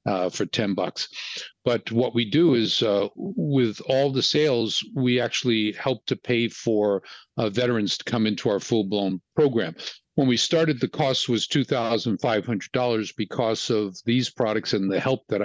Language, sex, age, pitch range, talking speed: English, male, 50-69, 105-130 Hz, 165 wpm